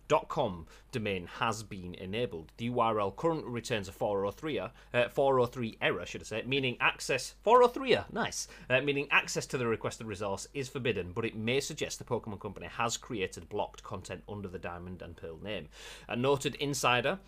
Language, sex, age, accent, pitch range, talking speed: English, male, 30-49, British, 95-130 Hz, 175 wpm